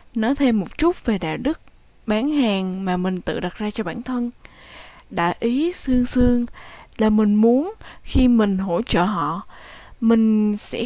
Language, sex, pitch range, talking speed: Vietnamese, female, 200-260 Hz, 170 wpm